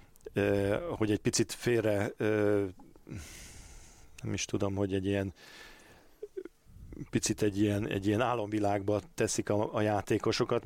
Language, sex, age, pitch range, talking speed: Hungarian, male, 40-59, 100-115 Hz, 125 wpm